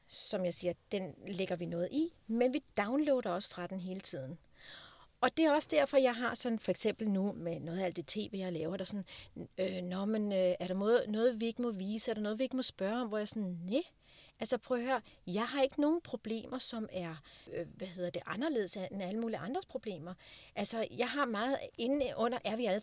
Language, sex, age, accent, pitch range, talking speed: English, female, 40-59, Danish, 180-250 Hz, 230 wpm